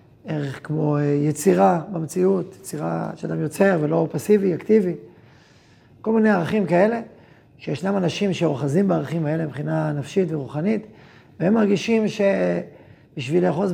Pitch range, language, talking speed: 145-190 Hz, Hebrew, 115 wpm